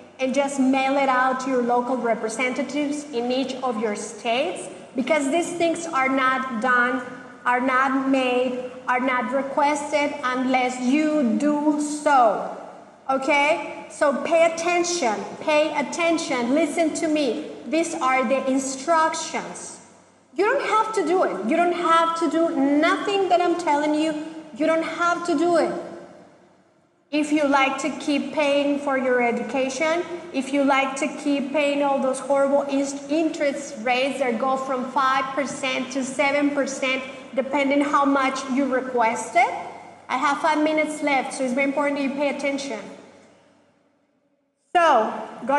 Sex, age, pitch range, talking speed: female, 40-59, 260-310 Hz, 145 wpm